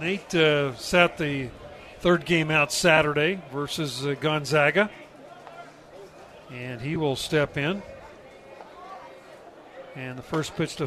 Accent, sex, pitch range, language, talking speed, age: American, male, 145-175 Hz, English, 115 wpm, 40-59